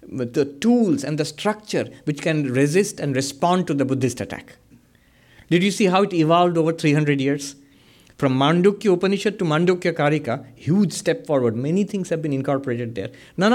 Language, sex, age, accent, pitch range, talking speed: English, male, 60-79, Indian, 120-160 Hz, 175 wpm